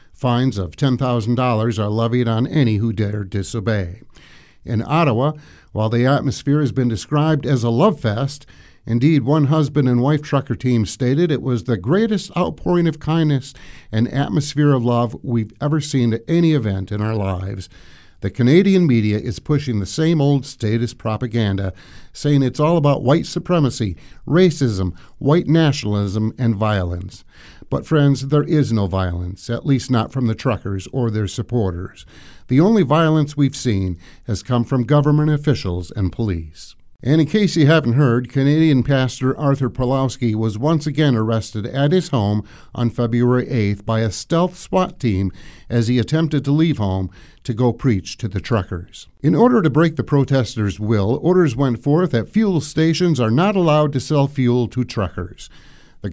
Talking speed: 170 wpm